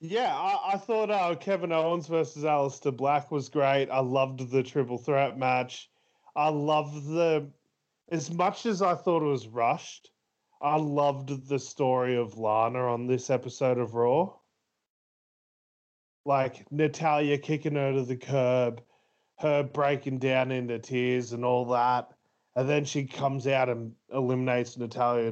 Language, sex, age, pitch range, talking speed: English, male, 20-39, 125-155 Hz, 150 wpm